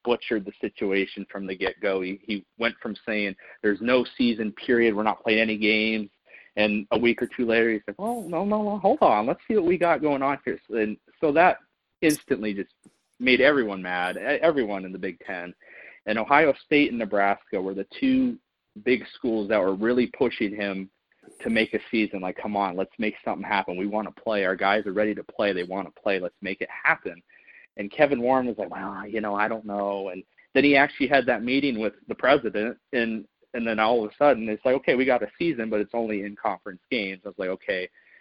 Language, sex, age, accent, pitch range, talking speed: English, male, 30-49, American, 100-125 Hz, 225 wpm